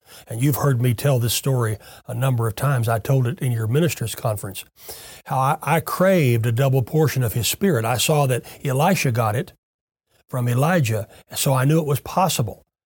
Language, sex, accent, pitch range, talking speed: English, male, American, 125-160 Hz, 190 wpm